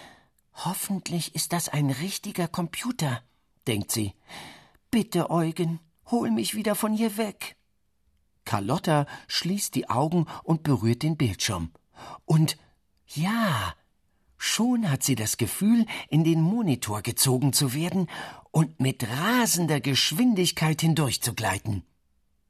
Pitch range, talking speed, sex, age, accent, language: 110-180 Hz, 110 wpm, male, 50-69, German, German